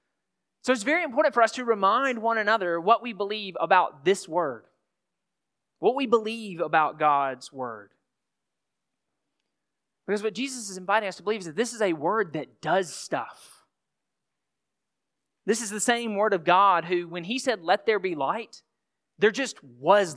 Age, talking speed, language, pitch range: 30-49, 170 wpm, English, 170-225 Hz